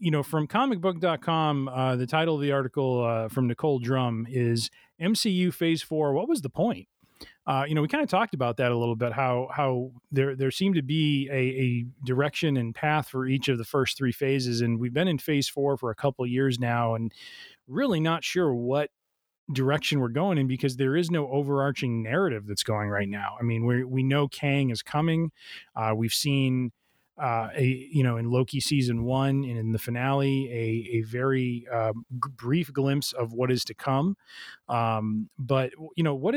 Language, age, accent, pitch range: English, 30-49, American, 120-145 Hz